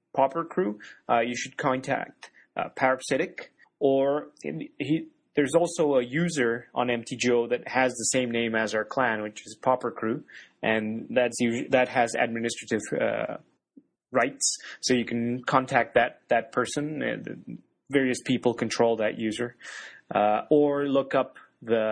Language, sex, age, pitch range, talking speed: English, male, 30-49, 110-140 Hz, 145 wpm